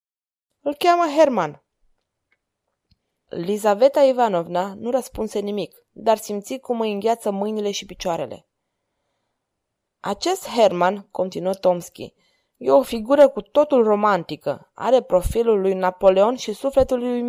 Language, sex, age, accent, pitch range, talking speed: Romanian, female, 20-39, native, 200-270 Hz, 115 wpm